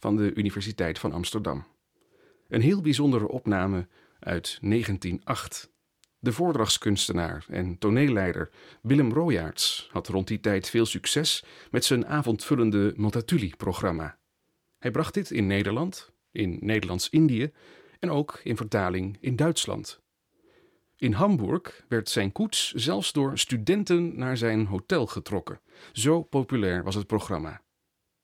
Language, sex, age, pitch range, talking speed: Dutch, male, 40-59, 100-140 Hz, 120 wpm